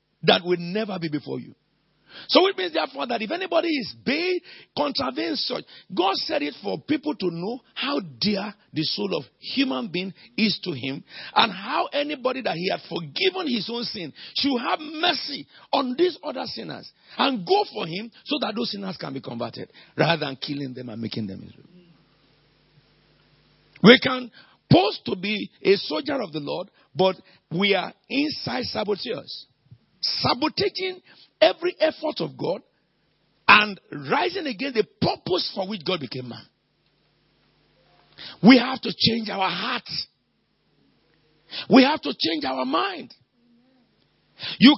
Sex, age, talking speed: male, 50-69, 150 wpm